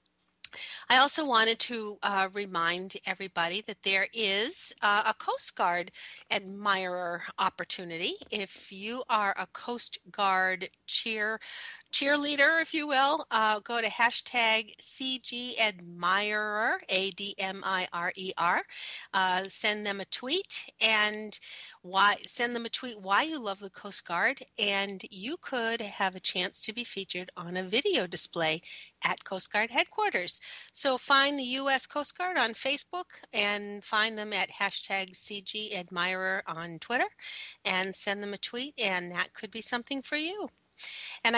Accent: American